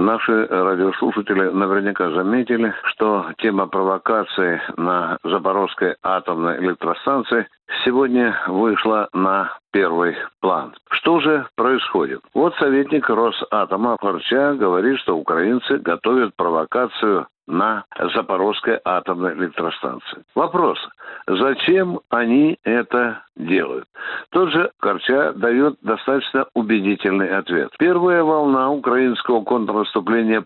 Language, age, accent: Russian, 60-79, native